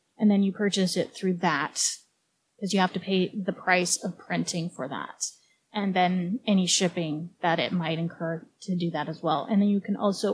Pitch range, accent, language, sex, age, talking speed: 180-225 Hz, American, English, female, 20-39, 210 wpm